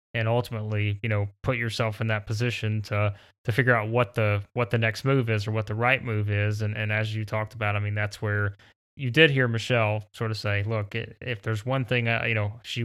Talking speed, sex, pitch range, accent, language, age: 245 wpm, male, 105-125 Hz, American, English, 20-39